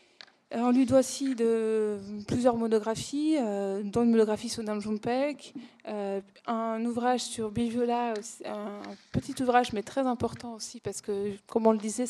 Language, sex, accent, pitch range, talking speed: French, female, French, 210-245 Hz, 170 wpm